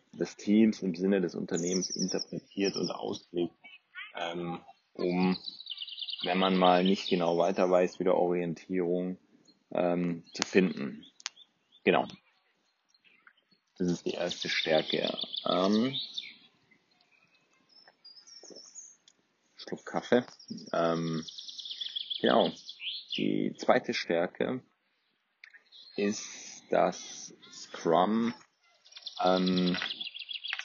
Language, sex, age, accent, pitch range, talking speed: German, male, 40-59, German, 90-110 Hz, 80 wpm